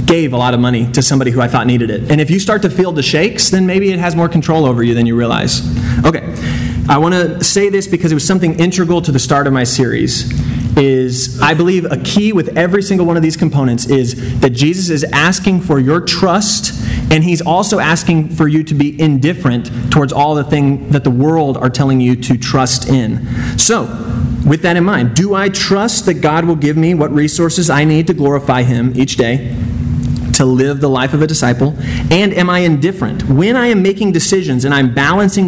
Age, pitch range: 30-49, 130-180 Hz